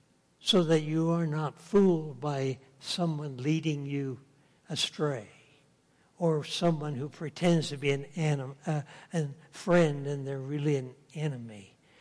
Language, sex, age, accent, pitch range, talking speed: English, male, 60-79, American, 145-180 Hz, 125 wpm